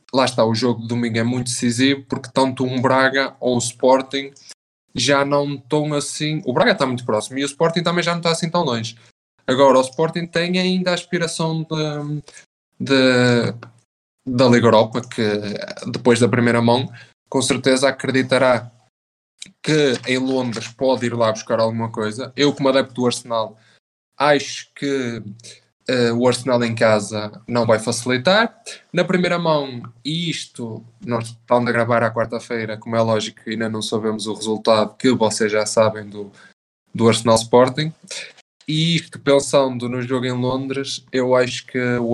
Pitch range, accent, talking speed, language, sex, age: 115-140 Hz, Brazilian, 165 wpm, English, male, 20-39